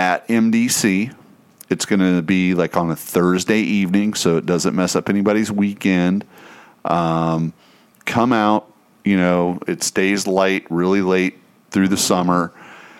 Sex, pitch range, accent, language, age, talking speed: male, 85-105 Hz, American, English, 40-59, 145 wpm